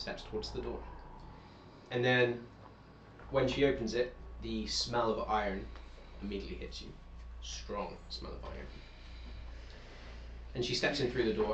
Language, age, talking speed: English, 20-39, 145 wpm